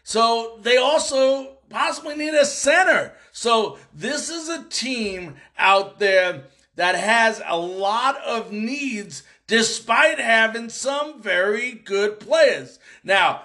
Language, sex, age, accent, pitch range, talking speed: English, male, 50-69, American, 205-270 Hz, 120 wpm